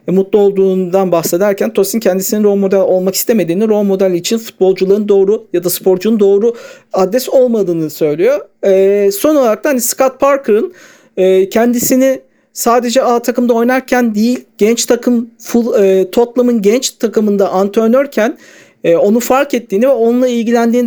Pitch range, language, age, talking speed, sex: 185-240 Hz, Turkish, 50-69, 145 wpm, male